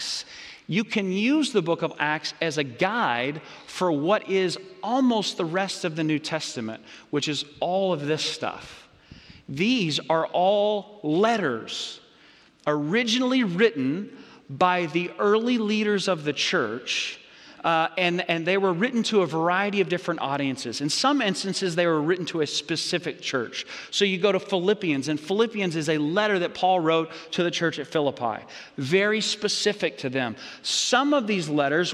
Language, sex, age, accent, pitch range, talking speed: English, male, 40-59, American, 140-185 Hz, 165 wpm